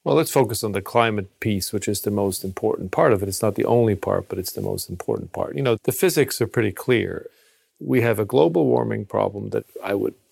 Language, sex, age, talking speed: English, male, 40-59, 245 wpm